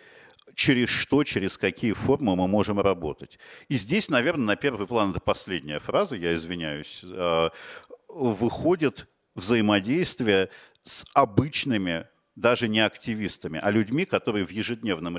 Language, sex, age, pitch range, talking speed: Russian, male, 50-69, 100-130 Hz, 125 wpm